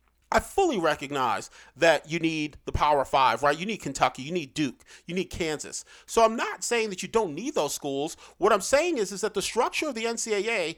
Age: 40-59